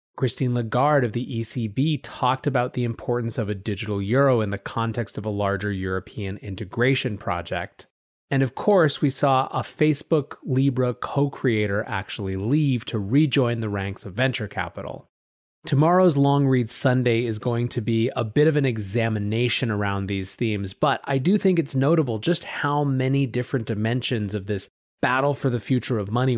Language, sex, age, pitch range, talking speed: English, male, 30-49, 110-150 Hz, 170 wpm